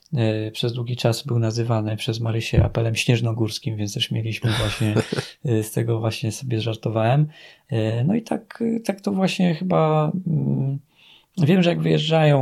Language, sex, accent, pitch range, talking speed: Polish, male, native, 110-135 Hz, 140 wpm